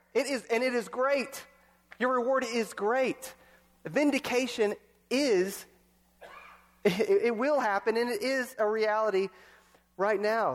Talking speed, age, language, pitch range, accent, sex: 130 wpm, 30-49, English, 155-205 Hz, American, male